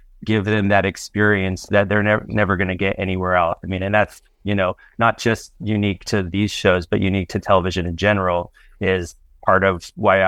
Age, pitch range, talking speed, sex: 30-49, 95-105 Hz, 210 wpm, male